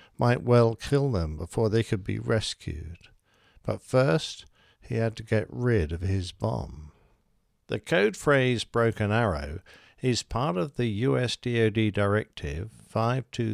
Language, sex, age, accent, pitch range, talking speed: English, male, 60-79, British, 100-130 Hz, 135 wpm